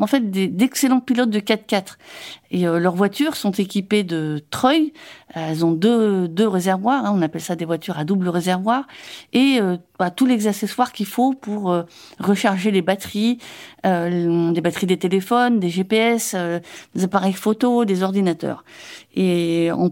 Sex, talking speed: female, 170 wpm